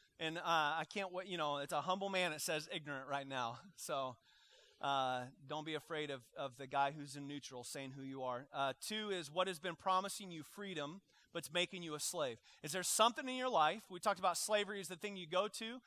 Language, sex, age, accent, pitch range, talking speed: English, male, 30-49, American, 135-185 Hz, 240 wpm